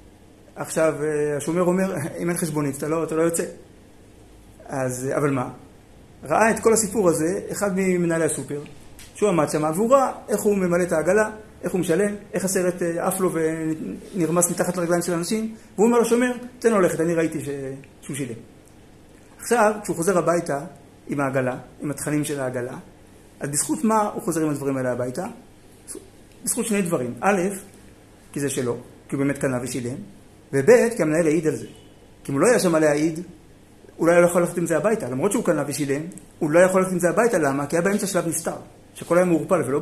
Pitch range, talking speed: 130-190 Hz, 195 wpm